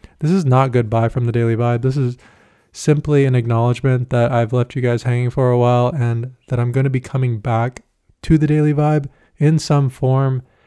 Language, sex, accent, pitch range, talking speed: English, male, American, 120-130 Hz, 200 wpm